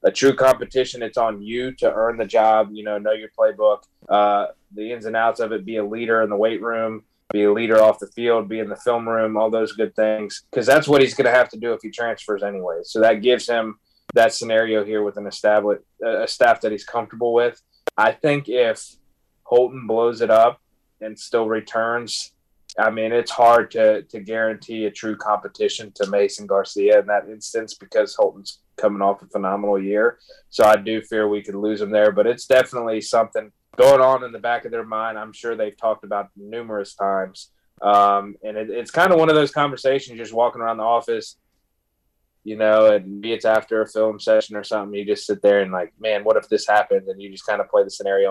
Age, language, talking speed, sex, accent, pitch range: 20-39, English, 220 wpm, male, American, 105-130 Hz